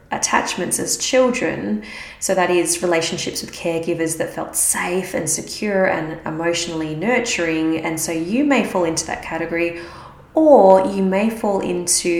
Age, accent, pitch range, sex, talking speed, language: 20-39, Australian, 165-195 Hz, female, 150 wpm, English